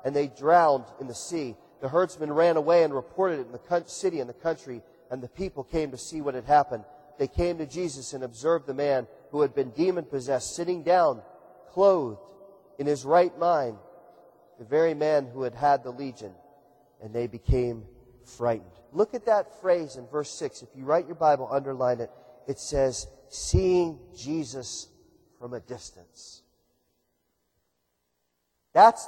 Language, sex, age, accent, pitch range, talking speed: English, male, 40-59, American, 140-230 Hz, 165 wpm